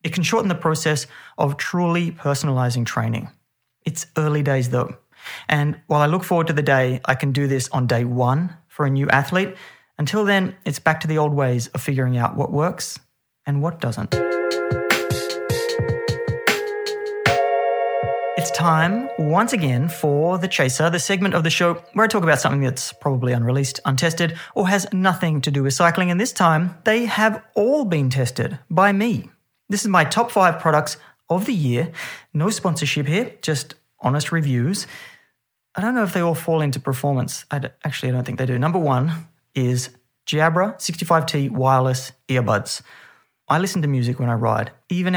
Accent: Australian